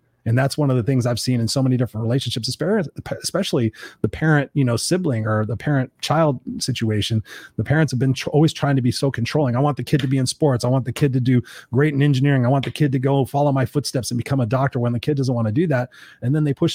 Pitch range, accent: 120-145 Hz, American